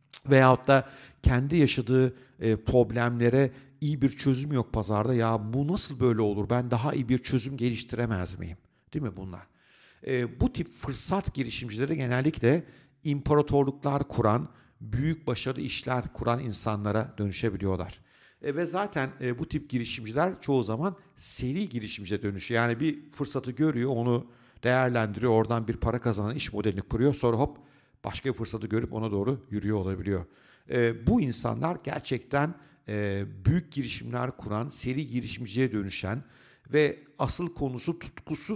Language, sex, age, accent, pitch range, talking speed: Turkish, male, 50-69, native, 110-140 Hz, 135 wpm